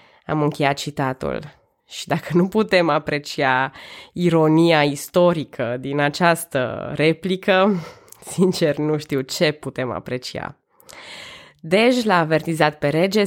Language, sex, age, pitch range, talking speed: Romanian, female, 20-39, 150-190 Hz, 110 wpm